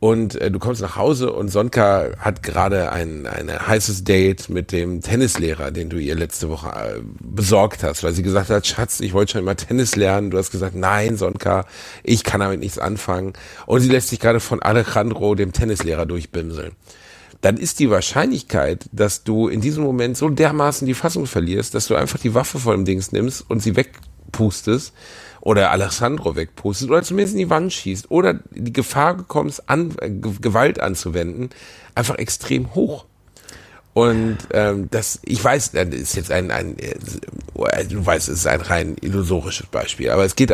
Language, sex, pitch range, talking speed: German, male, 90-120 Hz, 185 wpm